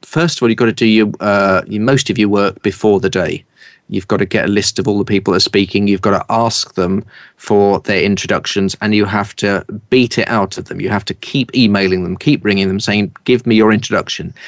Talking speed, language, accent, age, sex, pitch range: 245 wpm, English, British, 30-49, male, 95-110 Hz